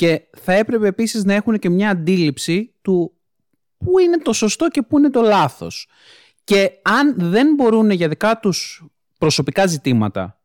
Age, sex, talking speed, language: 30-49, male, 160 wpm, Greek